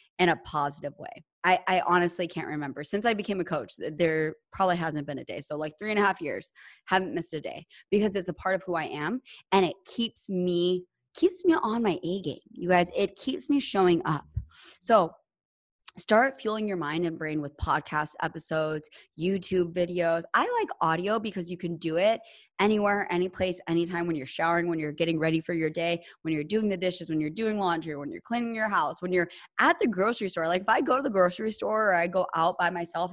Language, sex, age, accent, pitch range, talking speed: English, female, 20-39, American, 170-215 Hz, 225 wpm